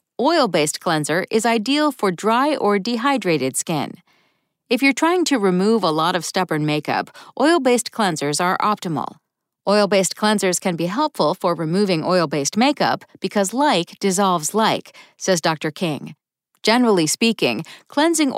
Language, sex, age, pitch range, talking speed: English, female, 40-59, 170-245 Hz, 135 wpm